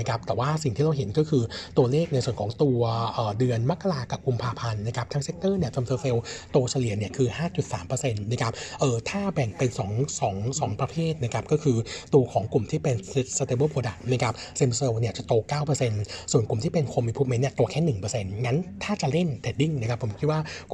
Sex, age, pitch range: male, 60-79, 120-150 Hz